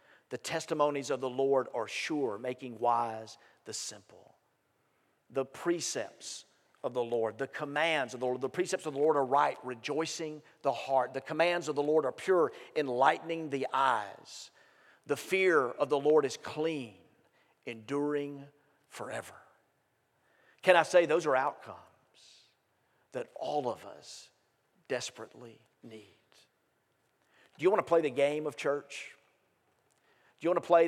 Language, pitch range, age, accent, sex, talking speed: English, 130-160 Hz, 50-69, American, male, 150 wpm